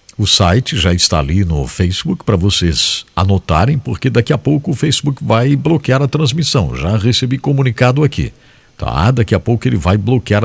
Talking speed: 180 wpm